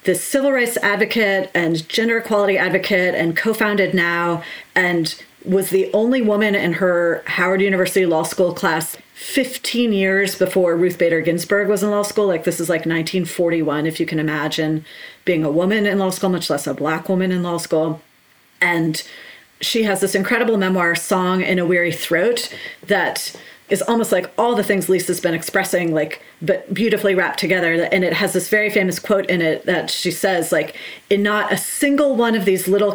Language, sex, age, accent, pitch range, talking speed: English, female, 30-49, American, 170-205 Hz, 190 wpm